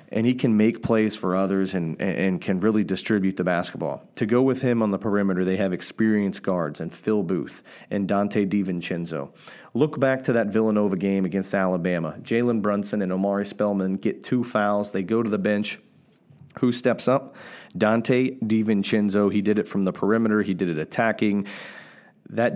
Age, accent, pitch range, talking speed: 40-59, American, 95-110 Hz, 180 wpm